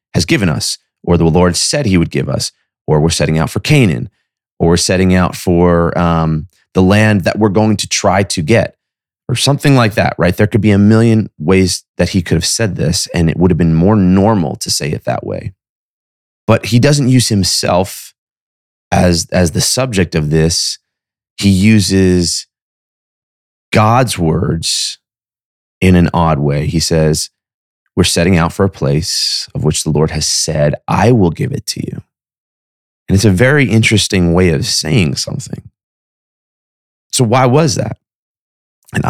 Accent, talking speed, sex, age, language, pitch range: American, 175 wpm, male, 30-49, English, 80-110 Hz